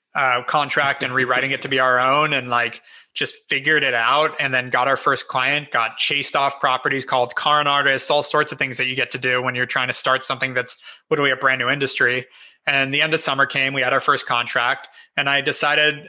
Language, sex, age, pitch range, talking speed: English, male, 20-39, 125-150 Hz, 240 wpm